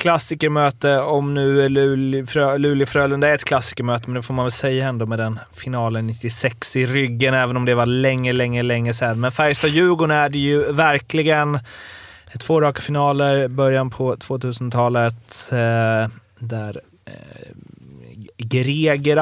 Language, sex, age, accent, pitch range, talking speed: Swedish, male, 30-49, native, 115-140 Hz, 145 wpm